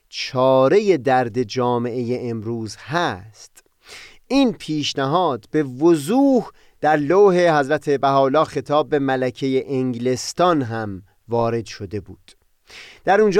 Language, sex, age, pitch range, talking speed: Persian, male, 30-49, 125-175 Hz, 105 wpm